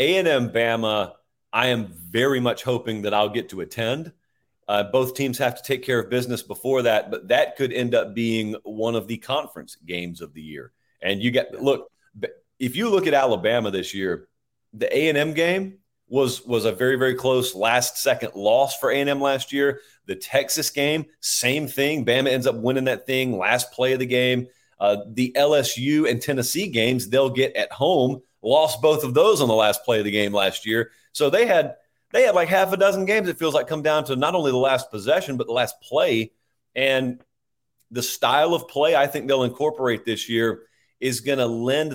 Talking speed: 205 wpm